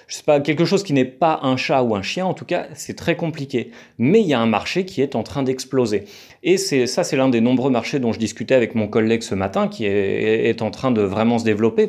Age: 30-49